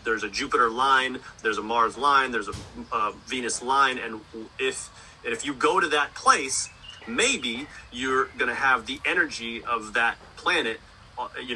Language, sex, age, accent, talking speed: English, male, 30-49, American, 160 wpm